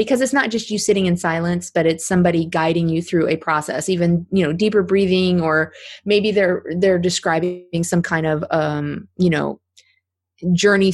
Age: 20-39